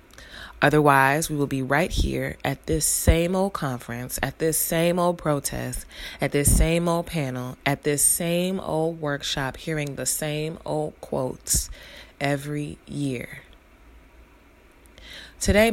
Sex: female